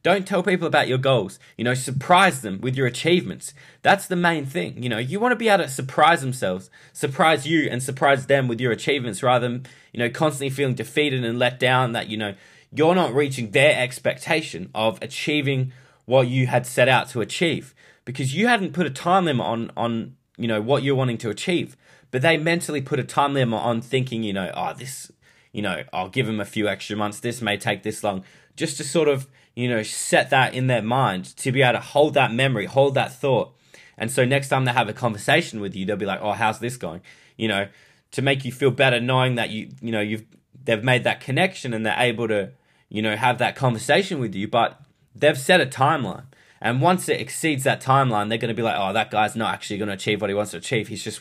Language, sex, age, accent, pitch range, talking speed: English, male, 20-39, Australian, 110-145 Hz, 235 wpm